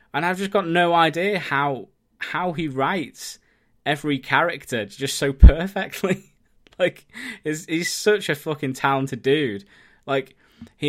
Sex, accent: male, British